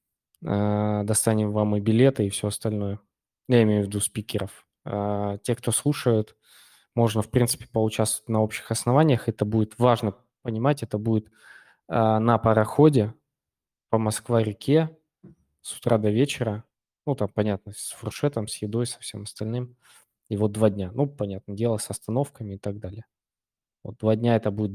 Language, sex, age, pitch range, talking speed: Russian, male, 20-39, 105-120 Hz, 155 wpm